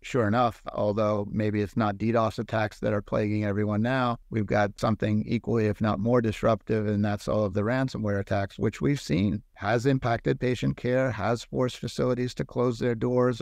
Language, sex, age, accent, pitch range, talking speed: English, male, 50-69, American, 105-120 Hz, 190 wpm